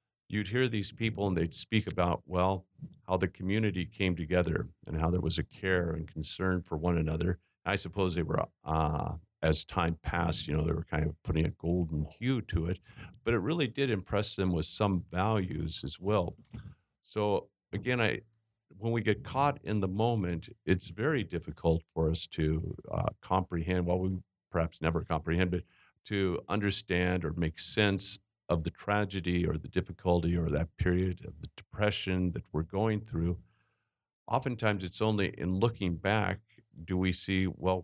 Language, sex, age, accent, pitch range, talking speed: English, male, 50-69, American, 85-105 Hz, 180 wpm